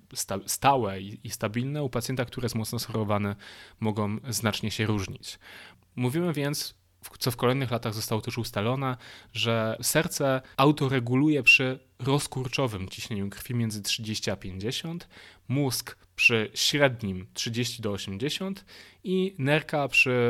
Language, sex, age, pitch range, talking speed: Polish, male, 20-39, 110-135 Hz, 125 wpm